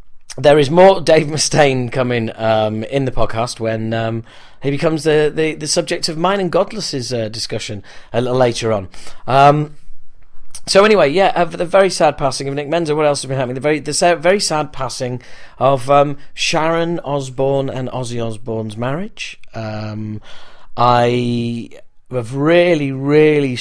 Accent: British